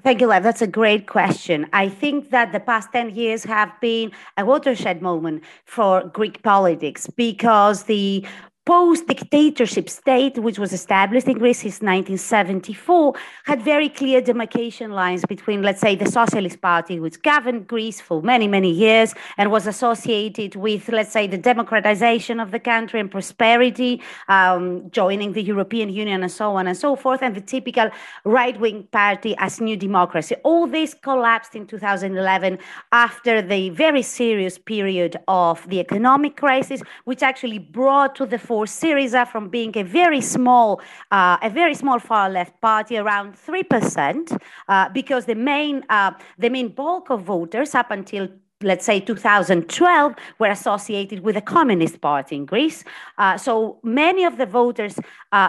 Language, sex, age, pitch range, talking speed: English, female, 30-49, 200-255 Hz, 165 wpm